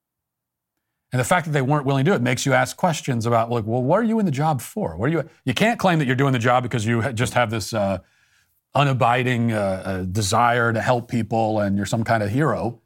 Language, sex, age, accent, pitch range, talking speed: English, male, 40-59, American, 110-135 Hz, 250 wpm